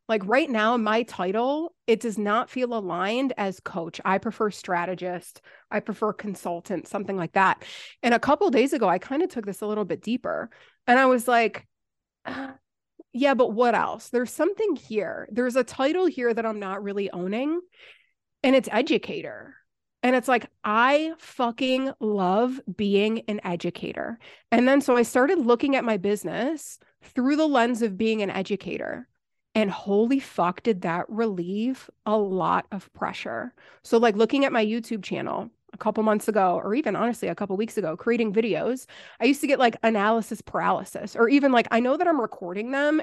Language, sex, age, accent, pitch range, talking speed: English, female, 30-49, American, 205-260 Hz, 180 wpm